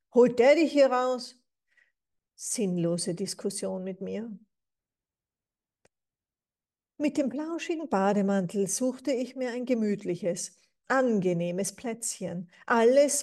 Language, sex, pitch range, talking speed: German, female, 190-250 Hz, 95 wpm